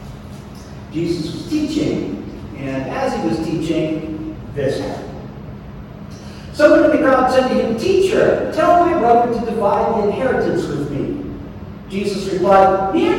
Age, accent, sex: 50-69, American, male